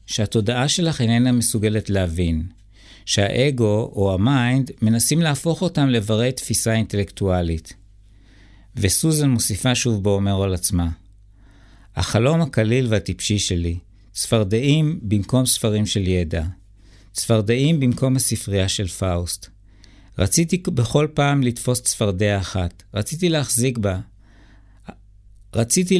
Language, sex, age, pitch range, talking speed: Hebrew, male, 50-69, 95-125 Hz, 100 wpm